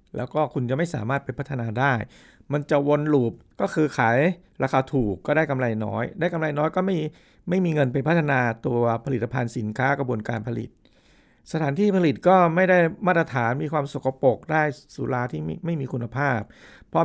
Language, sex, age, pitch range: Thai, male, 60-79, 130-165 Hz